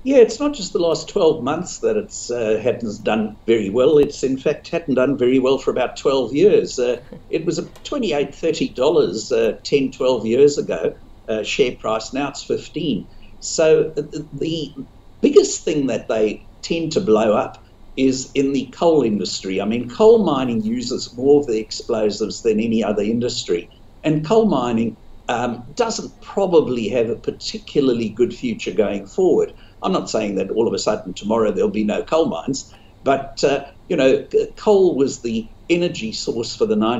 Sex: male